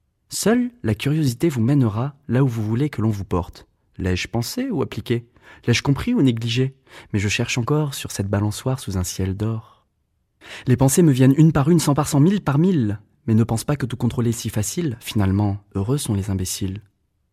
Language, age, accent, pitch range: French, 20-39, French, 105-140 Hz